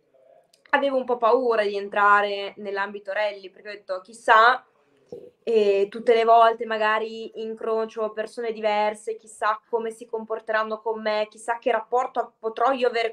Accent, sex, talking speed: native, female, 145 wpm